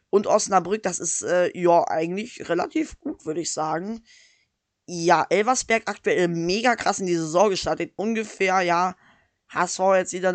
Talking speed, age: 150 wpm, 20-39